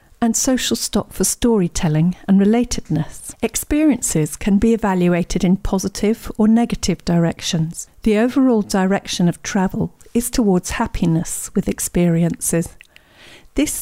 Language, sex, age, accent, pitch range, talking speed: English, female, 50-69, British, 175-230 Hz, 115 wpm